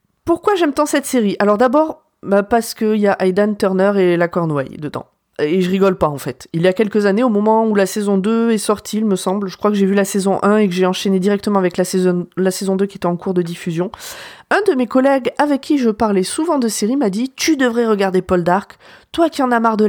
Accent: French